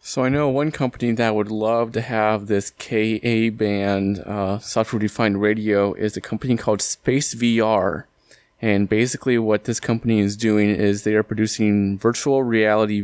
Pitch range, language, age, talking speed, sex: 105-115 Hz, English, 20-39, 160 wpm, male